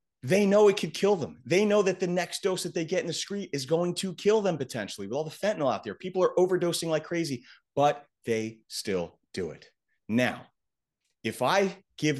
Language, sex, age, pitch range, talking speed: English, male, 30-49, 120-175 Hz, 215 wpm